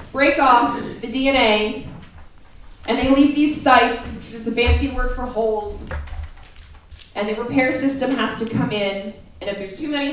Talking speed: 180 wpm